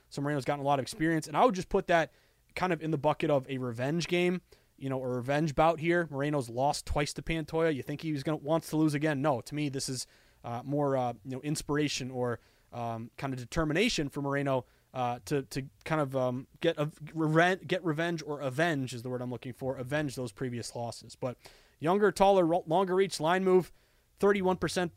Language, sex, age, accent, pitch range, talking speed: English, male, 20-39, American, 130-175 Hz, 215 wpm